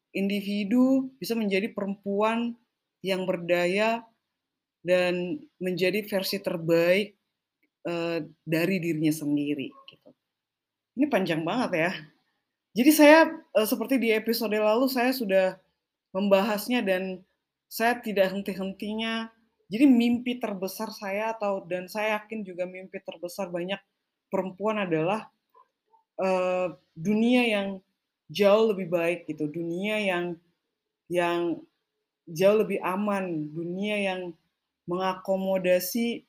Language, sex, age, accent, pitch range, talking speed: Indonesian, female, 20-39, native, 185-225 Hz, 100 wpm